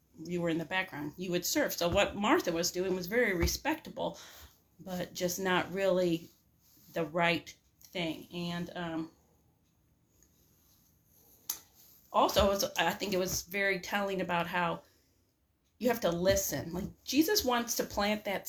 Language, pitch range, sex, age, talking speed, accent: English, 170-200 Hz, female, 40-59, 150 wpm, American